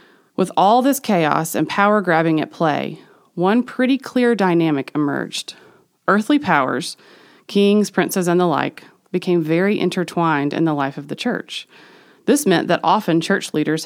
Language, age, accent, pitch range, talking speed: English, 30-49, American, 155-200 Hz, 145 wpm